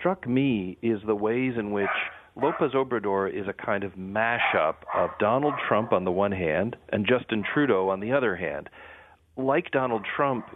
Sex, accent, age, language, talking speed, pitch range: male, American, 40-59, English, 175 wpm, 105-130 Hz